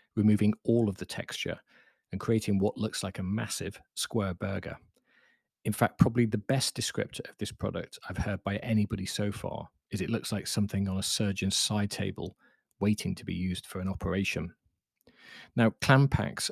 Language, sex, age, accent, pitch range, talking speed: English, male, 40-59, British, 95-115 Hz, 180 wpm